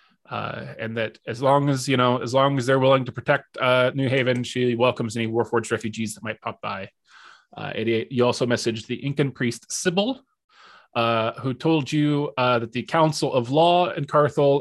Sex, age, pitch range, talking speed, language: male, 20-39, 120-165 Hz, 195 wpm, English